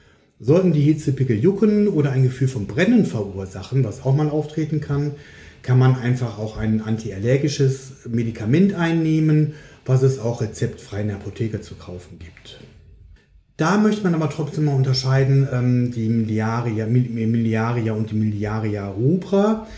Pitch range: 110-150 Hz